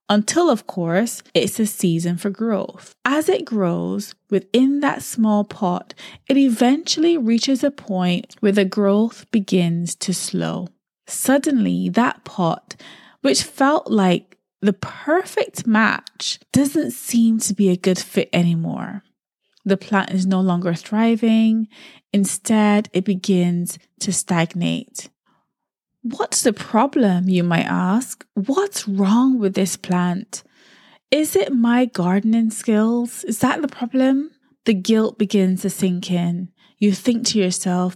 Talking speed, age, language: 135 wpm, 20-39, English